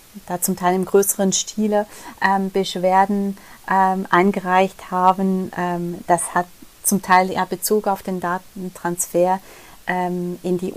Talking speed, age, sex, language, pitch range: 135 wpm, 30-49, female, German, 175-195 Hz